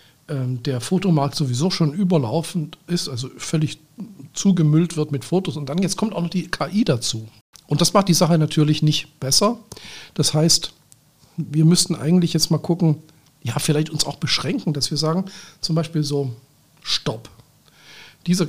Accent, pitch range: German, 145-175 Hz